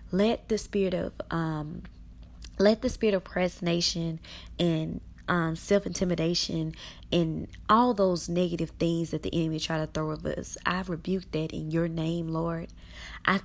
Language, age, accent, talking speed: English, 20-39, American, 160 wpm